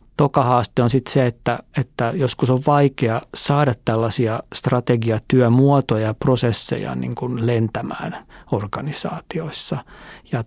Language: Finnish